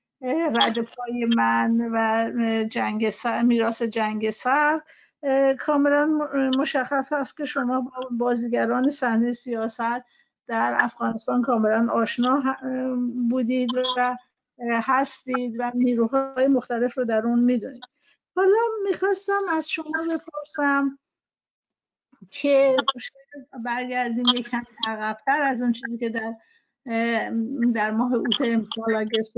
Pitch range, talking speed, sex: 230-270 Hz, 95 wpm, female